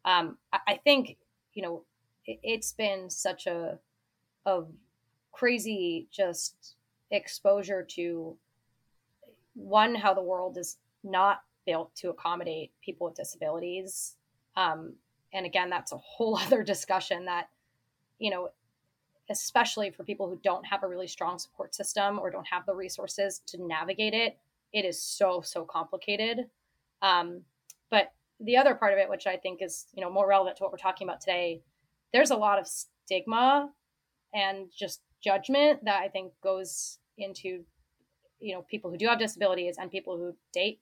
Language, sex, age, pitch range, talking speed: English, female, 20-39, 175-210 Hz, 155 wpm